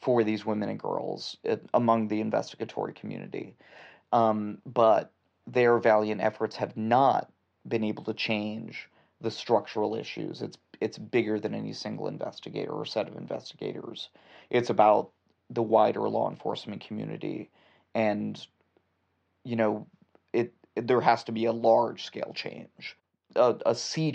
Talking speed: 140 wpm